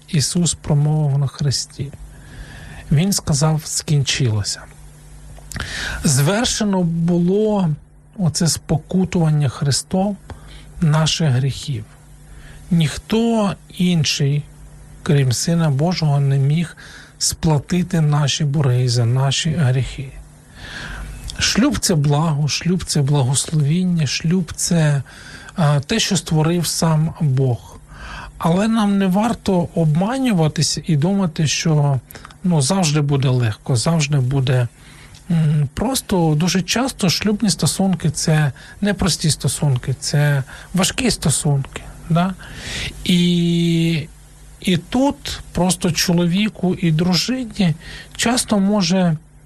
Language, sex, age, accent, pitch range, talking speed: Ukrainian, male, 40-59, native, 145-180 Hz, 95 wpm